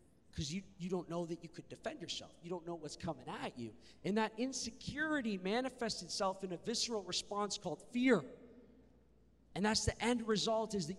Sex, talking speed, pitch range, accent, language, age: male, 190 wpm, 165-215 Hz, American, English, 40-59